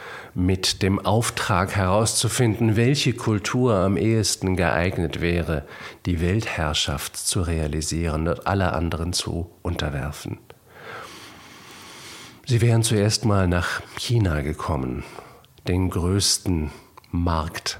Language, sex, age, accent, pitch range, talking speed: English, male, 50-69, German, 85-105 Hz, 100 wpm